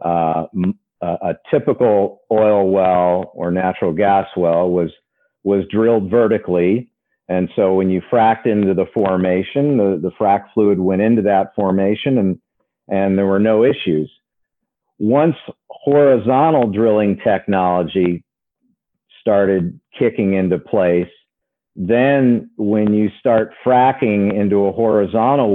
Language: English